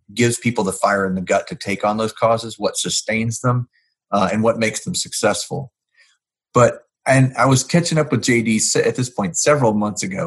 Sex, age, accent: male, 40-59, American